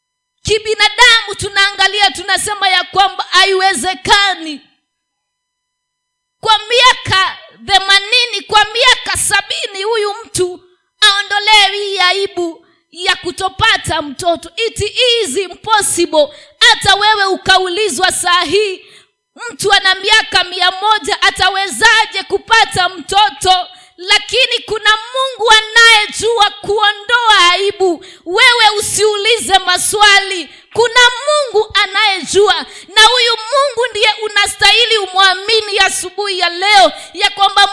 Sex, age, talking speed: female, 30-49, 90 wpm